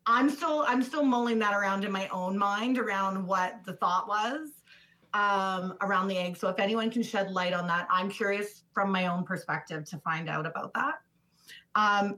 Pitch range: 180-220 Hz